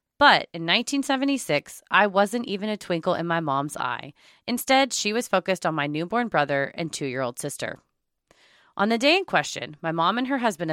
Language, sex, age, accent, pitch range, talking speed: English, female, 20-39, American, 145-205 Hz, 195 wpm